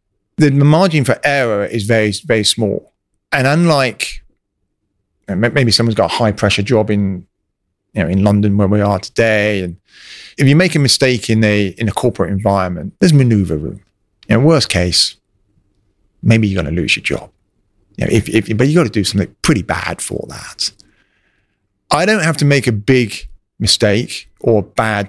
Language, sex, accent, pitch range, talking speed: English, male, British, 100-130 Hz, 190 wpm